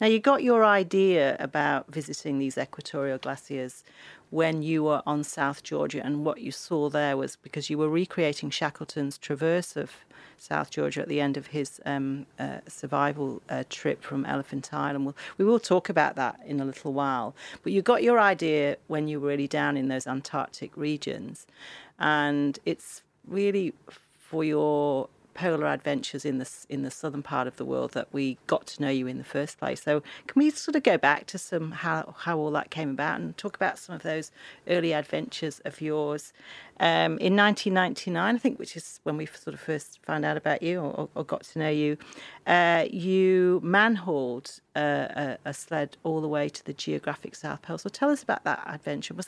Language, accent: English, British